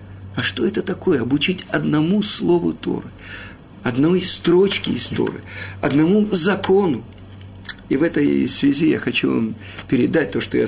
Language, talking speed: Russian, 140 wpm